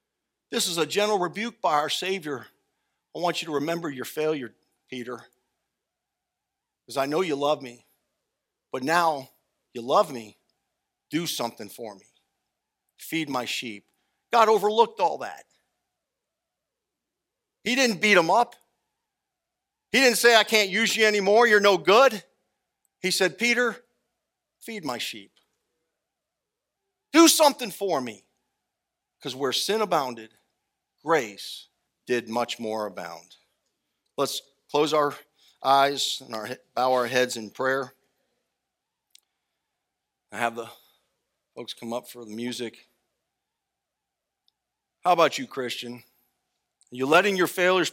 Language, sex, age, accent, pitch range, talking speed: English, male, 50-69, American, 125-215 Hz, 125 wpm